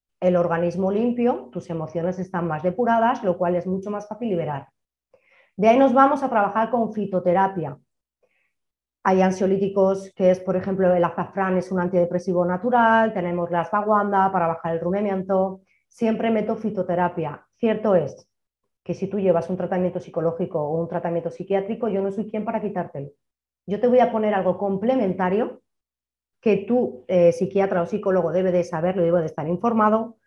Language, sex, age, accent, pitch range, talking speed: Spanish, female, 30-49, Spanish, 180-225 Hz, 165 wpm